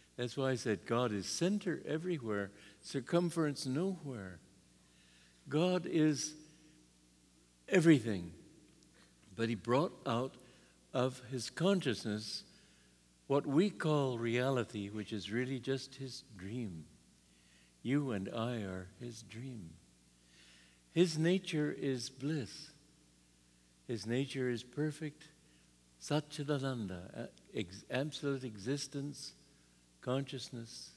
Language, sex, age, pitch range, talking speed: English, male, 60-79, 105-155 Hz, 95 wpm